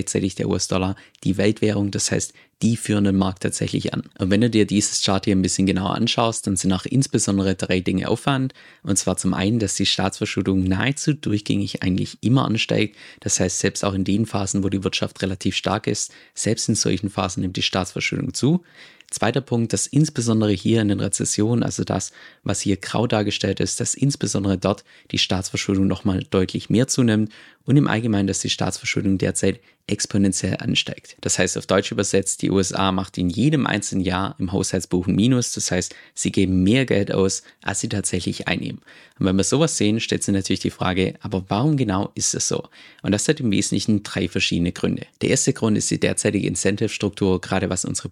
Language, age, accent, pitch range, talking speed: German, 20-39, German, 95-110 Hz, 200 wpm